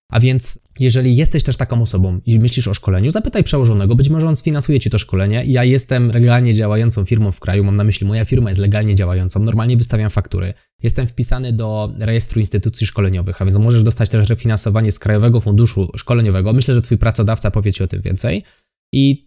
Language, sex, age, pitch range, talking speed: Polish, male, 20-39, 105-125 Hz, 200 wpm